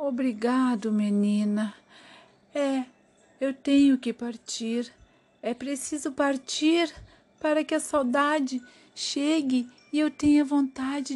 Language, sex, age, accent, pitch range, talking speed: Portuguese, female, 50-69, Brazilian, 205-275 Hz, 100 wpm